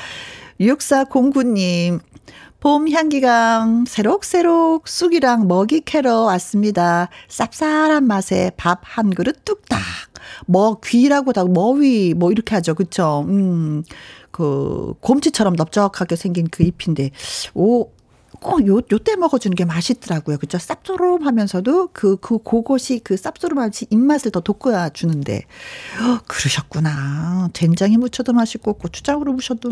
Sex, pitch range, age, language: female, 180-260 Hz, 40-59, Korean